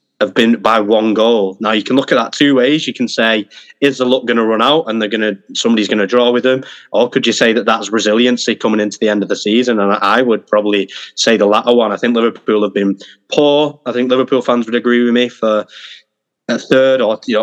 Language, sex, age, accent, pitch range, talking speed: English, male, 20-39, British, 105-125 Hz, 255 wpm